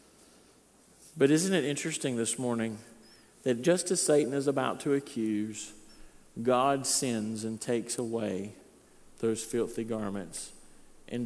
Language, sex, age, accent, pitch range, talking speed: English, male, 50-69, American, 110-135 Hz, 125 wpm